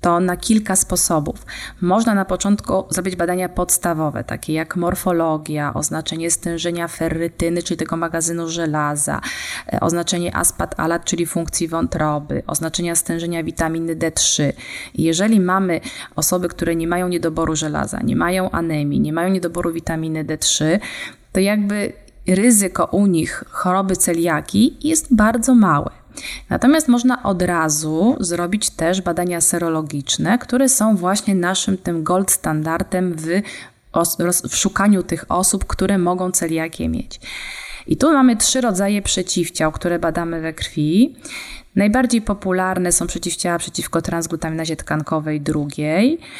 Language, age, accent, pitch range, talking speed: Polish, 20-39, native, 165-195 Hz, 125 wpm